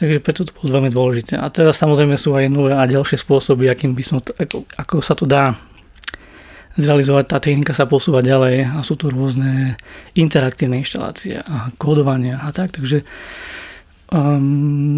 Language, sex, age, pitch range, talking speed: Slovak, male, 20-39, 135-155 Hz, 165 wpm